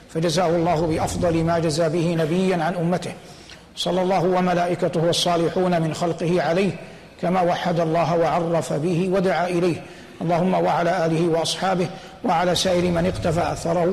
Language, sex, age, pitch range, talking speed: Arabic, male, 60-79, 170-185 Hz, 140 wpm